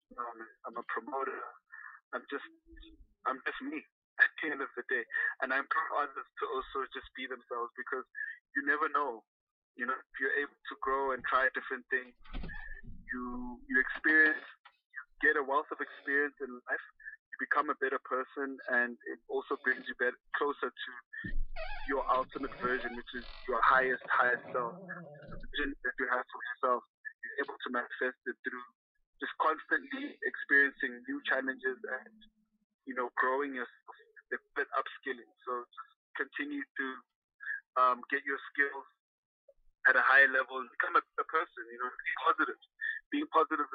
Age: 20-39